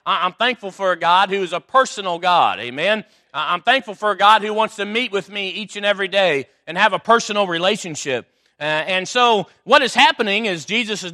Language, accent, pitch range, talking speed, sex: English, American, 185-235 Hz, 215 wpm, male